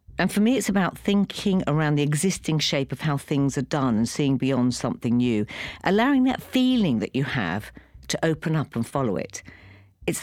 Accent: British